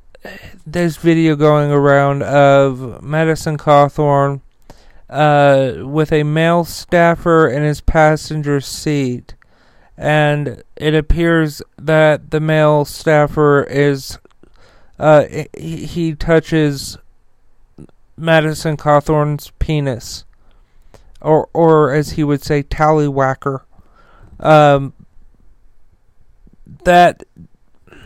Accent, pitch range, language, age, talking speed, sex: American, 145-160 Hz, English, 40-59, 85 wpm, male